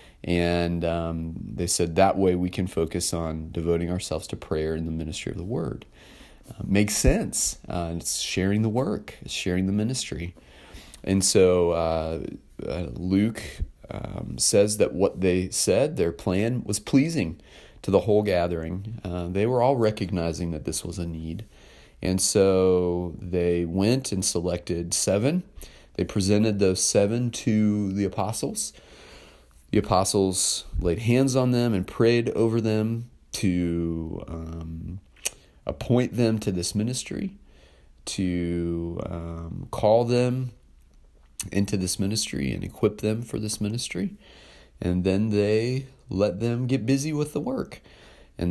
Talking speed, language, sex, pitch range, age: 140 wpm, English, male, 85-105 Hz, 30-49